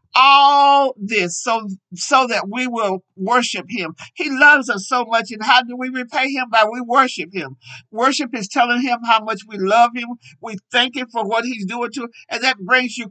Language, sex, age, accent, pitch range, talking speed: English, male, 60-79, American, 210-270 Hz, 210 wpm